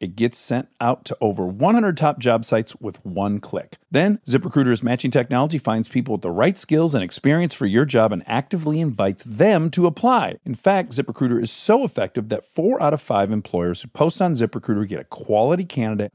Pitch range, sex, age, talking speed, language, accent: 110-170 Hz, male, 40-59, 200 wpm, English, American